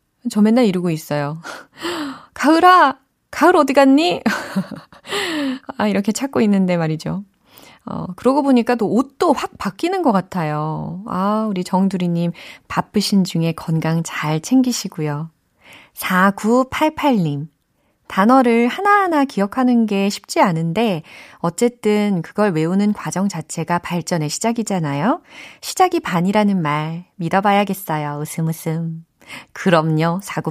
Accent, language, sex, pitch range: native, Korean, female, 160-245 Hz